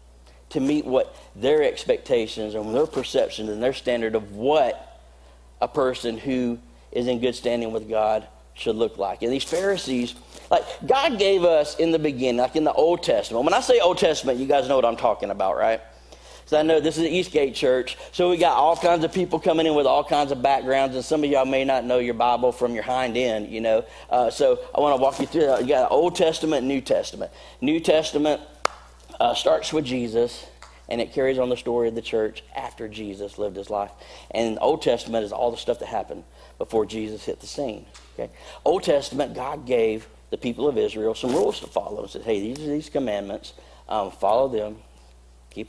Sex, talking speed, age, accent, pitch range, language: male, 215 wpm, 40-59, American, 110-155 Hz, English